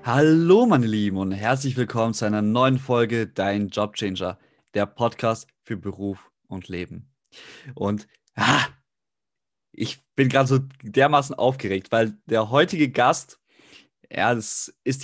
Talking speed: 130 wpm